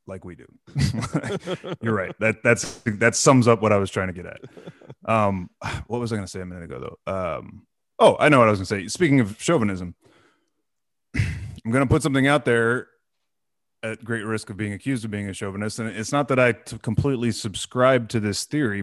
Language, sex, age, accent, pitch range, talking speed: English, male, 30-49, American, 105-140 Hz, 205 wpm